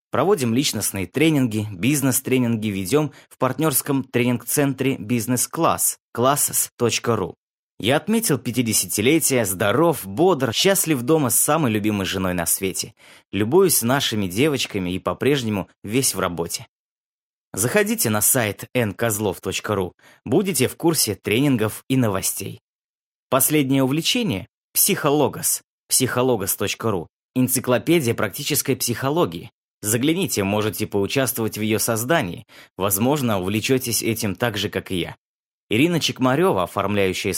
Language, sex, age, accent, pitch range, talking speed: Russian, male, 20-39, native, 100-145 Hz, 105 wpm